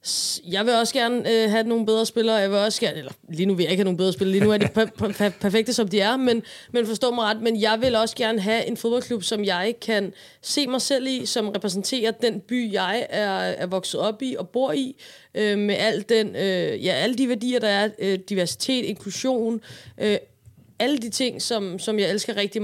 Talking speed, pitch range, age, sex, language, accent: 240 wpm, 190-230 Hz, 20-39, female, Danish, native